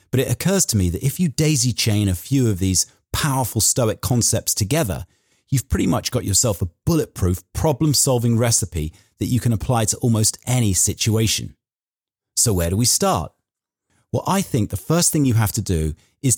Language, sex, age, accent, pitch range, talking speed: English, male, 40-59, British, 95-125 Hz, 185 wpm